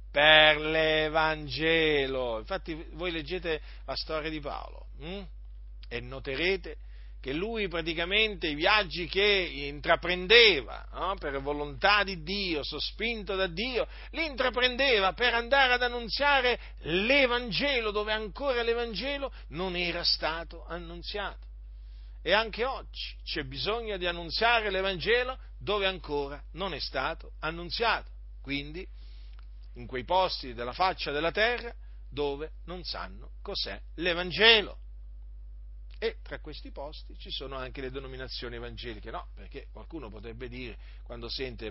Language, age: Italian, 50-69